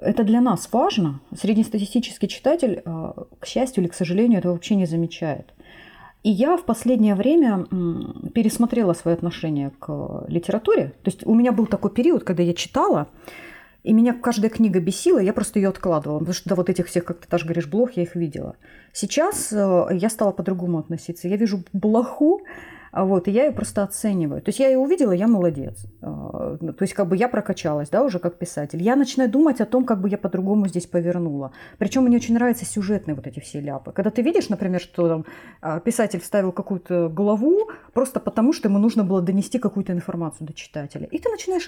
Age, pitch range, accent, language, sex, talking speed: 30-49, 175-240 Hz, native, Russian, female, 190 wpm